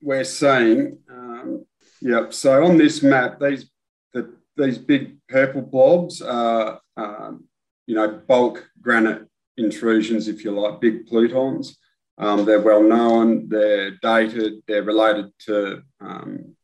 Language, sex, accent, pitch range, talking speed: English, male, Australian, 105-120 Hz, 130 wpm